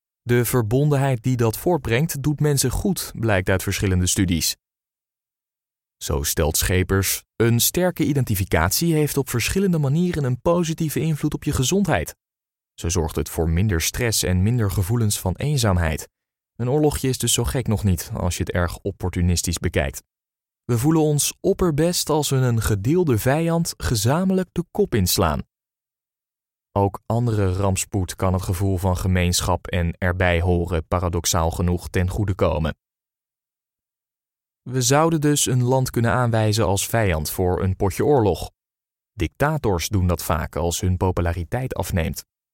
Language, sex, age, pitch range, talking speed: Dutch, male, 20-39, 95-135 Hz, 145 wpm